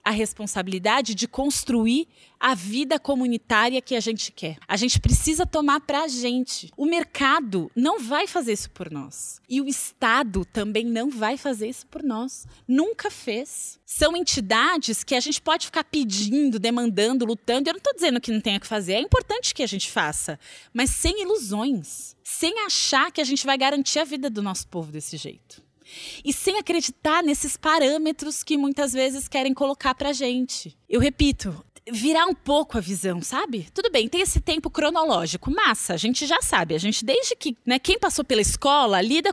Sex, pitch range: female, 220-300 Hz